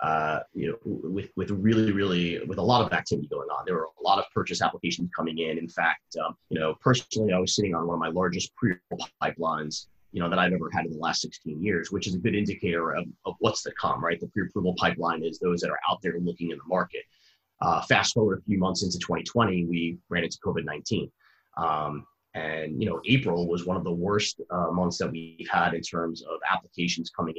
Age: 30-49